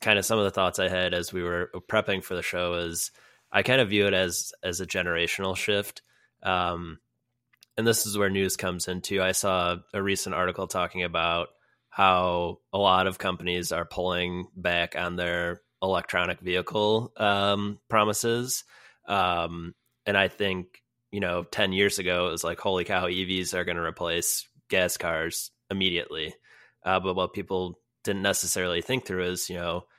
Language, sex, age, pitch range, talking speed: English, male, 20-39, 90-100 Hz, 175 wpm